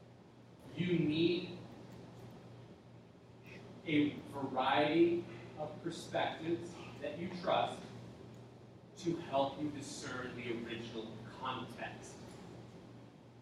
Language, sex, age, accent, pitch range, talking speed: English, male, 30-49, American, 140-190 Hz, 70 wpm